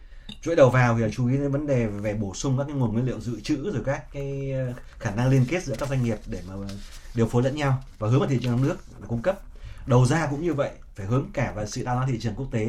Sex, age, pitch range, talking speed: male, 20-39, 110-140 Hz, 285 wpm